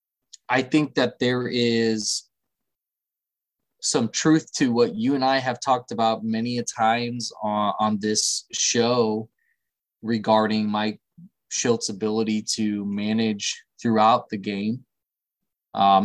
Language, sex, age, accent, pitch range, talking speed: English, male, 20-39, American, 110-135 Hz, 120 wpm